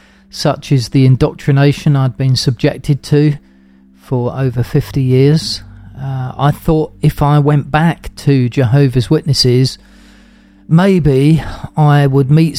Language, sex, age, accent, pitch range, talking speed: English, male, 40-59, British, 115-145 Hz, 125 wpm